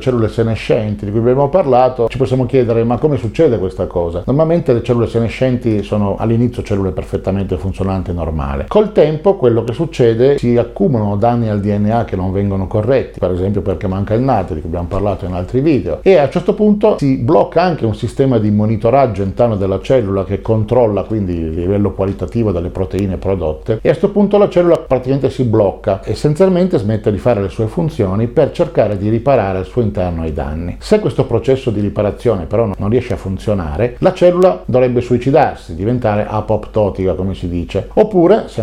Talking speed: 185 wpm